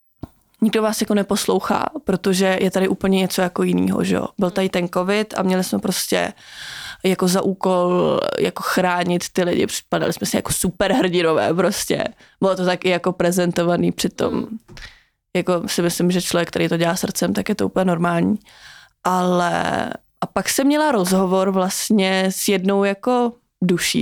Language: Czech